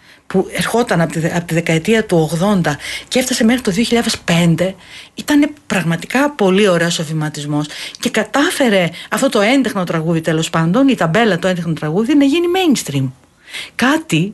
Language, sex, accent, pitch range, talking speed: Greek, female, native, 175-245 Hz, 145 wpm